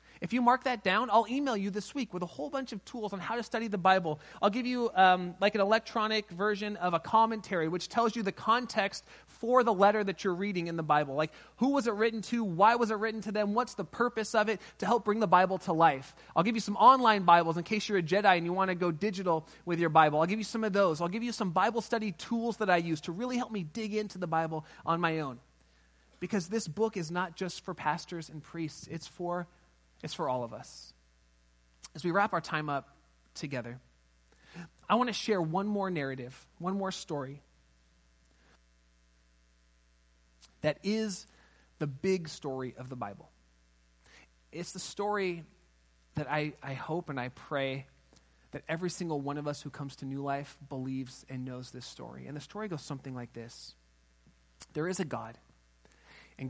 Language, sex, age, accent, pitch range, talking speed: English, male, 30-49, American, 125-210 Hz, 210 wpm